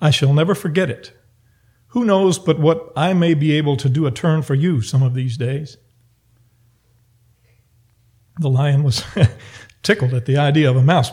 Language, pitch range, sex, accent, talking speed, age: English, 120-150 Hz, male, American, 180 wpm, 50-69